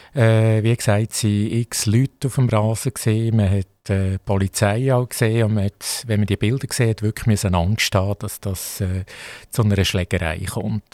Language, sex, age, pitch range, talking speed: German, male, 50-69, 110-130 Hz, 195 wpm